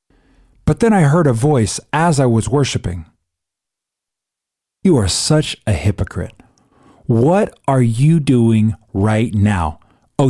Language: English